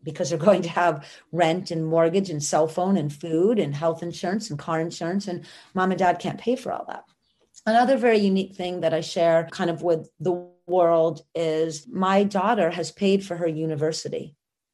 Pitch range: 160-180 Hz